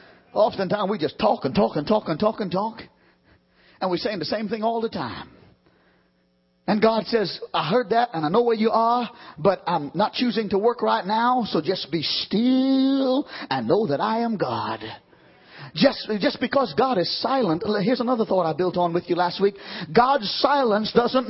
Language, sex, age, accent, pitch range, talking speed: English, male, 40-59, American, 195-270 Hz, 195 wpm